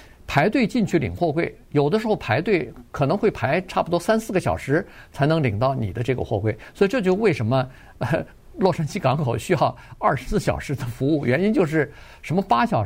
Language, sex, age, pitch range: Chinese, male, 50-69, 125-205 Hz